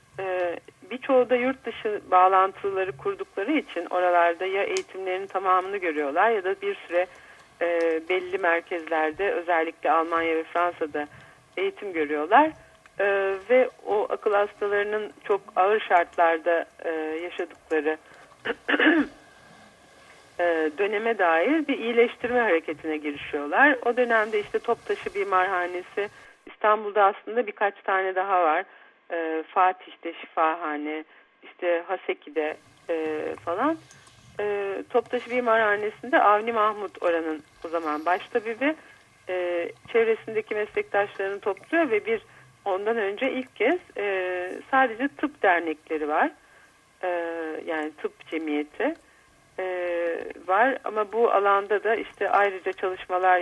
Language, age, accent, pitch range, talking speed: Turkish, 50-69, native, 170-240 Hz, 105 wpm